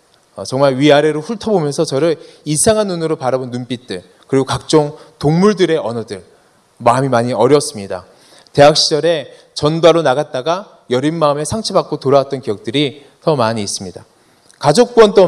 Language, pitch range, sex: Korean, 145-215 Hz, male